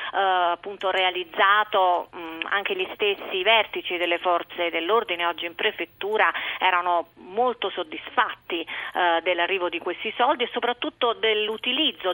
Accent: native